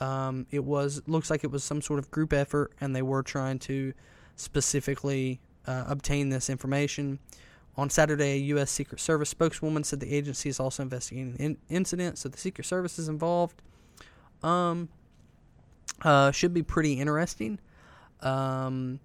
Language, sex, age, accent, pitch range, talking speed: English, male, 20-39, American, 130-150 Hz, 160 wpm